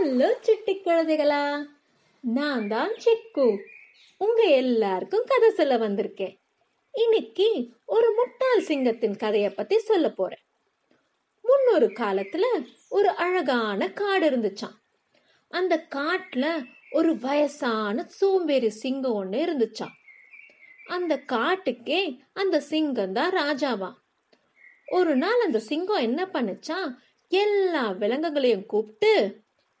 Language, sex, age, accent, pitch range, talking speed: Tamil, female, 30-49, native, 235-350 Hz, 35 wpm